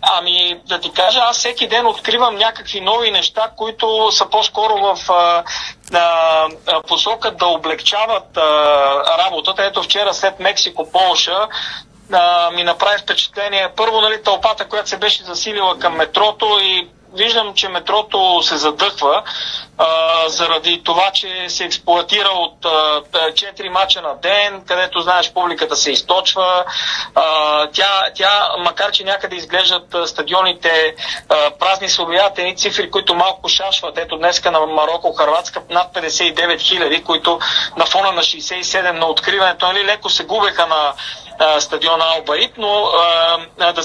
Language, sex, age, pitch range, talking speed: Bulgarian, male, 40-59, 170-205 Hz, 135 wpm